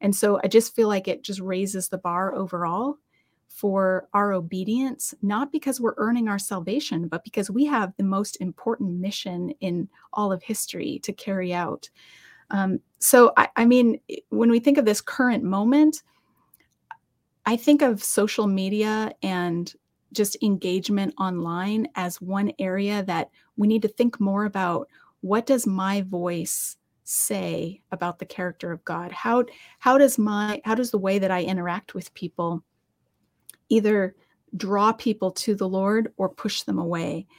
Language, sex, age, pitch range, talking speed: English, female, 30-49, 185-225 Hz, 160 wpm